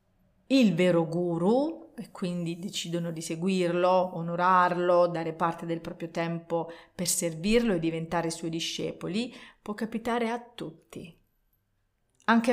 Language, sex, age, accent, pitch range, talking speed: Italian, female, 40-59, native, 165-215 Hz, 120 wpm